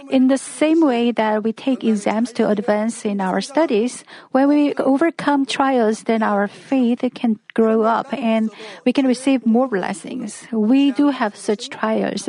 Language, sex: Korean, female